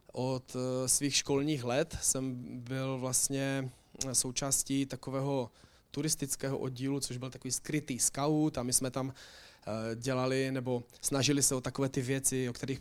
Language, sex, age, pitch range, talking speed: Czech, male, 20-39, 125-145 Hz, 140 wpm